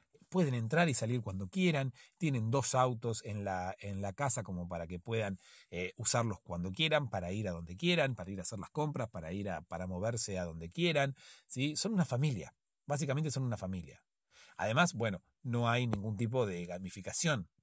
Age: 40-59